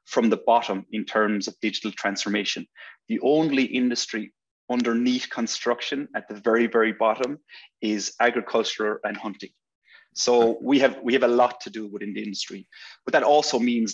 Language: English